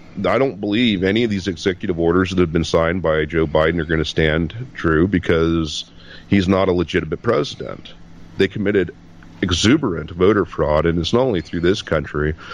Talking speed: 180 wpm